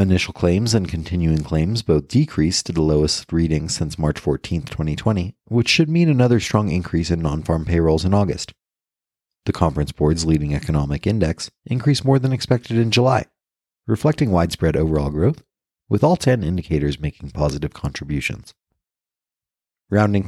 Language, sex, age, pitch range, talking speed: English, male, 30-49, 75-100 Hz, 150 wpm